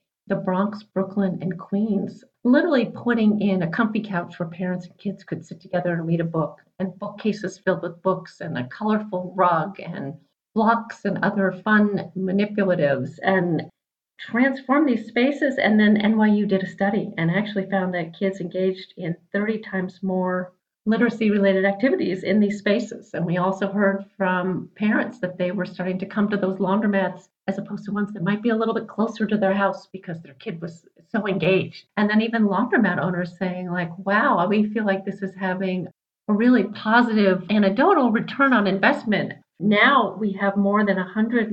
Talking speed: 180 wpm